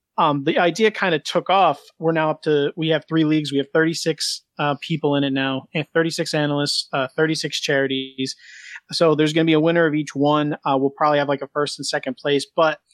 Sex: male